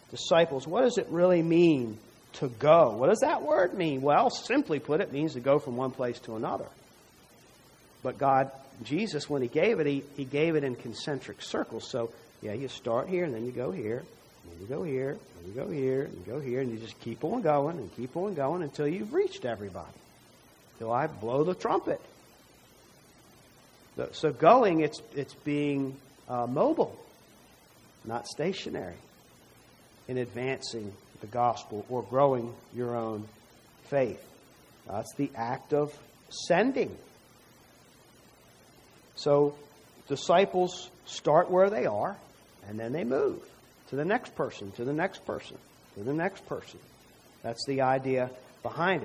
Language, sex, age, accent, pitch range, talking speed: English, male, 50-69, American, 120-160 Hz, 160 wpm